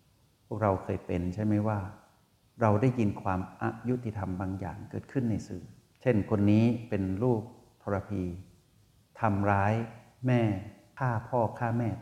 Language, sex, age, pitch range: Thai, male, 60-79, 95-120 Hz